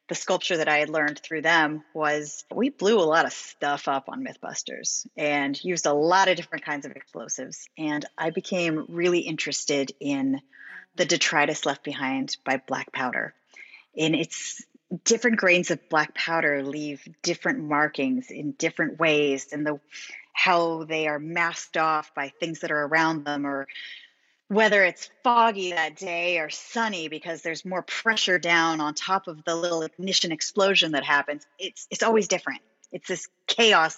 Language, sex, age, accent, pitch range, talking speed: English, female, 30-49, American, 150-190 Hz, 170 wpm